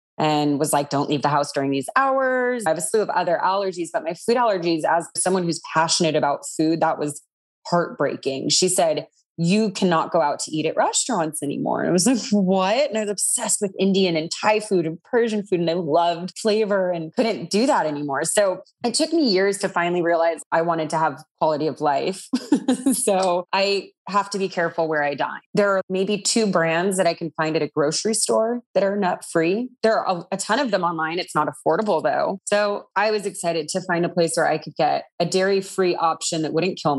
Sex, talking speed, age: female, 220 wpm, 20-39